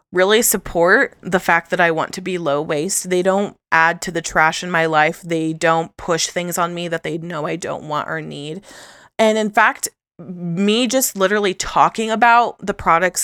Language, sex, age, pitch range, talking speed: English, female, 20-39, 170-210 Hz, 200 wpm